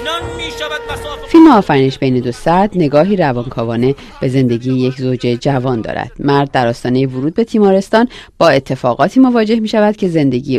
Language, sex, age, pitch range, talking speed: Persian, female, 40-59, 125-195 Hz, 140 wpm